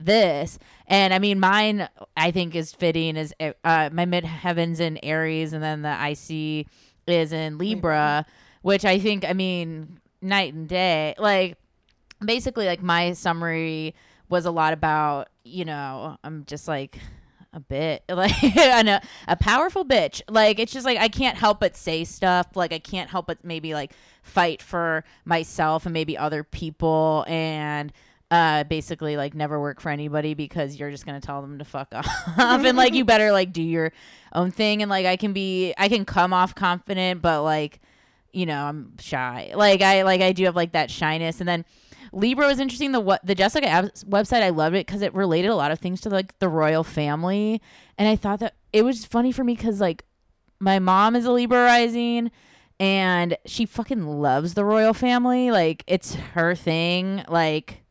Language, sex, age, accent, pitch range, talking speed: English, female, 20-39, American, 155-200 Hz, 190 wpm